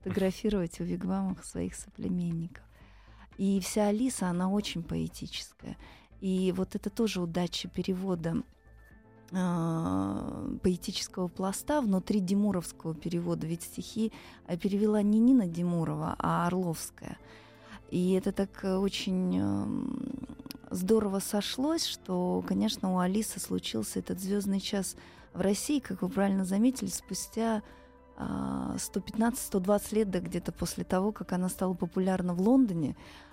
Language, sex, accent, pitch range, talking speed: Russian, female, native, 175-205 Hz, 110 wpm